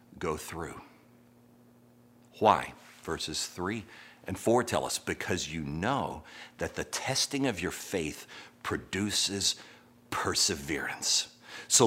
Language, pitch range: English, 105-140 Hz